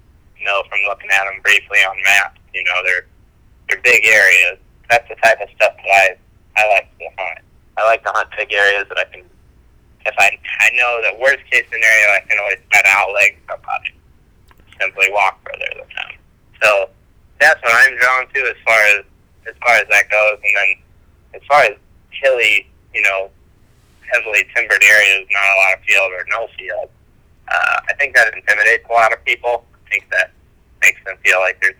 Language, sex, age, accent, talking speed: English, male, 30-49, American, 200 wpm